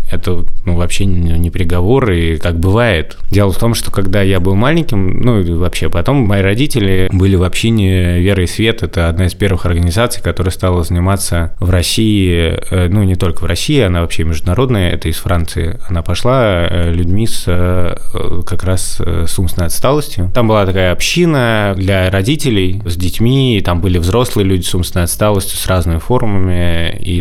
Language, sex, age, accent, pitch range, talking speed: Russian, male, 20-39, native, 85-105 Hz, 170 wpm